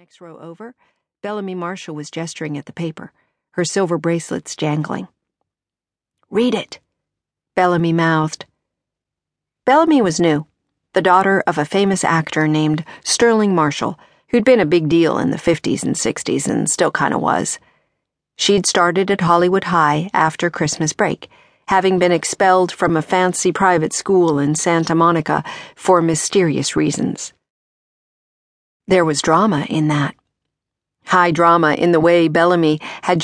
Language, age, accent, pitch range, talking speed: English, 50-69, American, 165-190 Hz, 145 wpm